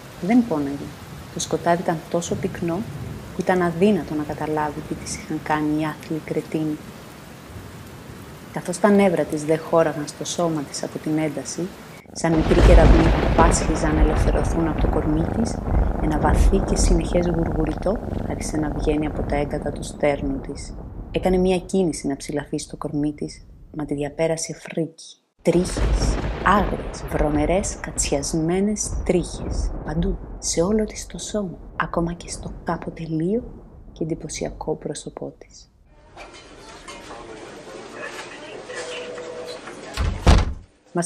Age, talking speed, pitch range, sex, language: 30-49, 130 wpm, 150-190 Hz, female, Greek